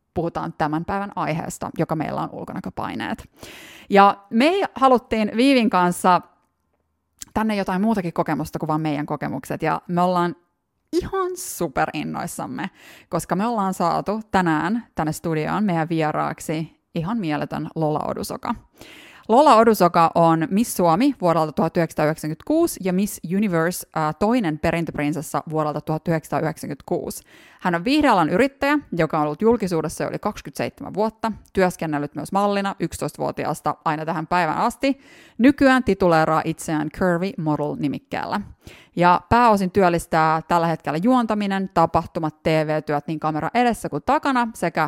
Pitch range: 155-215 Hz